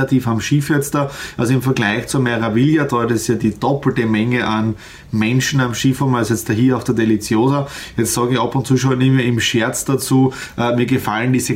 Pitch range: 120-150 Hz